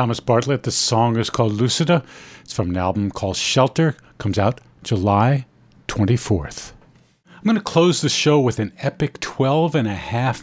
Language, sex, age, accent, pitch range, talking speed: English, male, 50-69, American, 110-150 Hz, 175 wpm